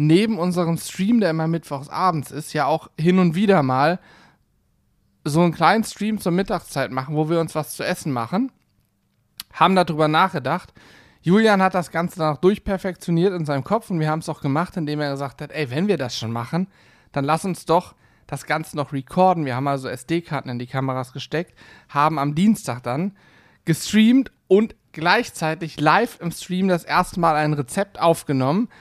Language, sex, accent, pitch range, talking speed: German, male, German, 140-180 Hz, 185 wpm